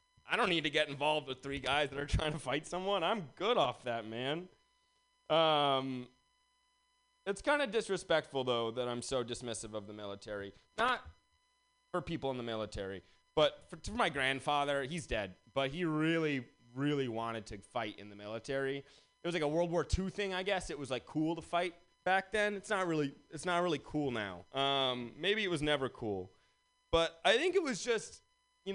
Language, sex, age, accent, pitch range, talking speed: English, male, 30-49, American, 130-185 Hz, 195 wpm